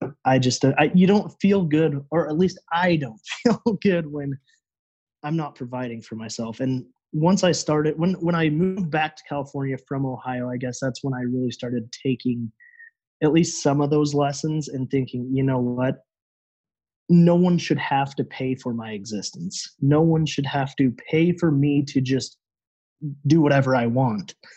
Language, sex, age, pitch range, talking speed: English, male, 20-39, 125-155 Hz, 185 wpm